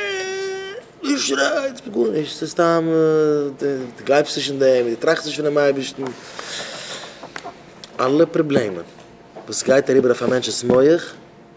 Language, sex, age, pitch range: English, male, 20-39, 125-140 Hz